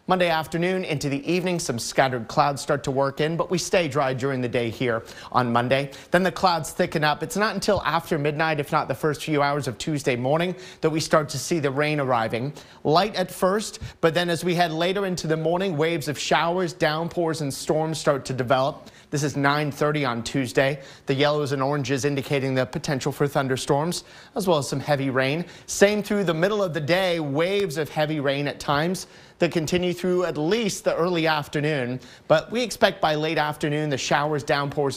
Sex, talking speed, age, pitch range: male, 205 wpm, 30-49, 140-170 Hz